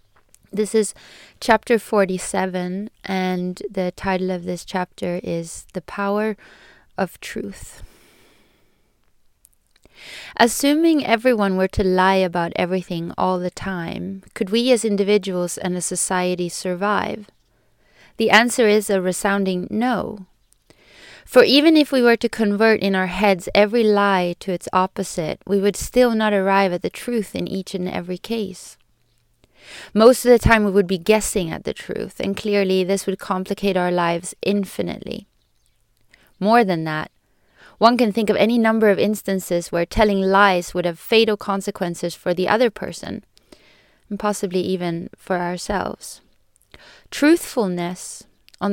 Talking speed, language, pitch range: 140 wpm, English, 180-215 Hz